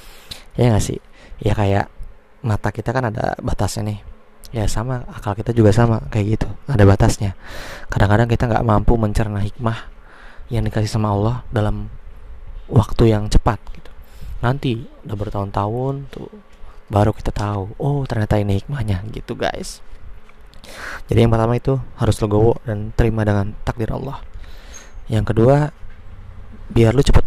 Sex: male